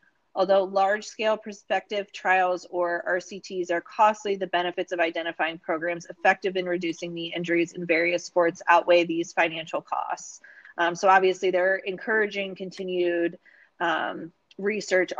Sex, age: female, 30-49